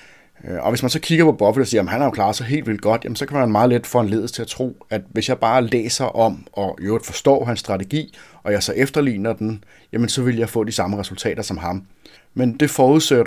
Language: Danish